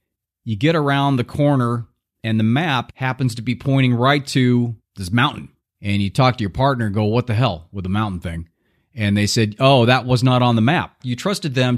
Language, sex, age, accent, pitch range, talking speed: English, male, 30-49, American, 105-130 Hz, 225 wpm